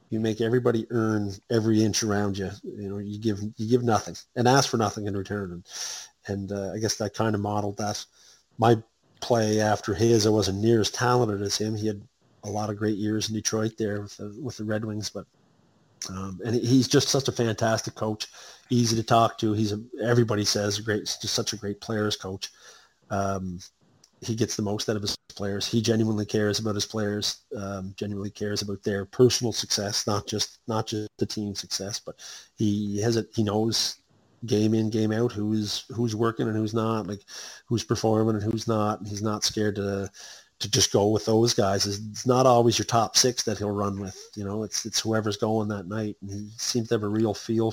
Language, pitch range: English, 100-115 Hz